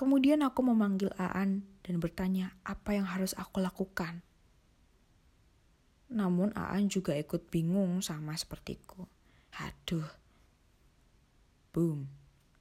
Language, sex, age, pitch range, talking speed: Indonesian, female, 20-39, 170-200 Hz, 95 wpm